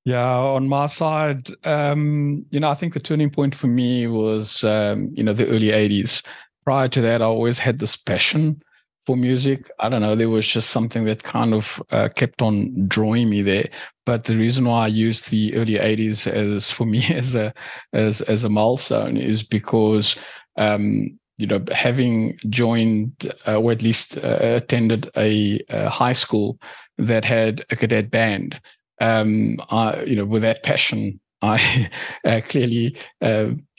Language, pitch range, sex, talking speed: English, 110-125 Hz, male, 175 wpm